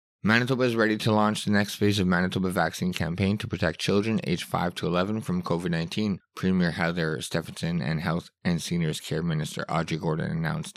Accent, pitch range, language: American, 90-110 Hz, English